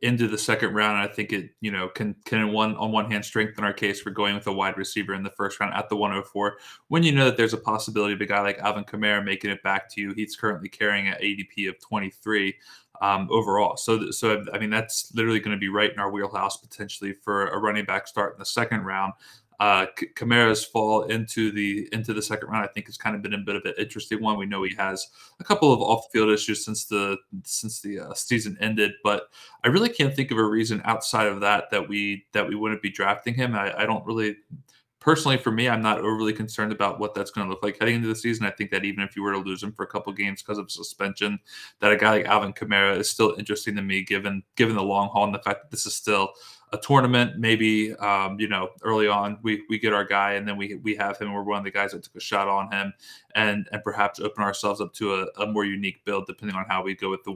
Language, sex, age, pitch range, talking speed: English, male, 20-39, 100-110 Hz, 260 wpm